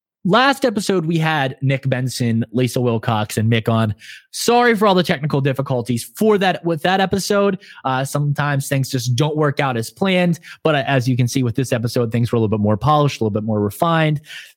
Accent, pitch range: American, 115-155 Hz